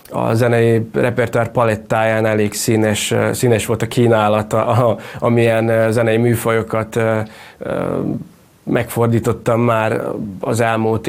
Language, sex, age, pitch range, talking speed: Hungarian, male, 20-39, 110-115 Hz, 90 wpm